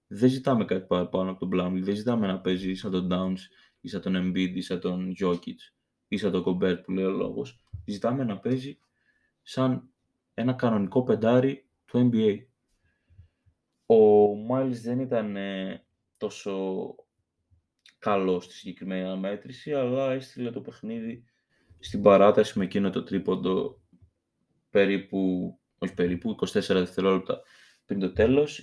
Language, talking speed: Greek, 130 wpm